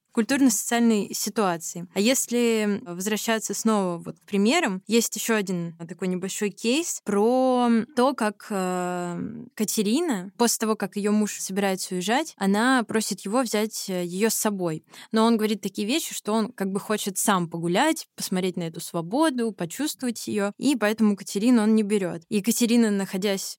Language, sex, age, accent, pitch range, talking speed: Russian, female, 20-39, native, 185-220 Hz, 155 wpm